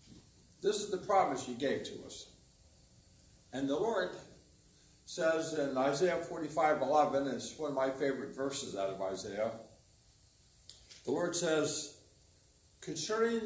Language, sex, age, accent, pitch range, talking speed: English, male, 60-79, American, 120-165 Hz, 135 wpm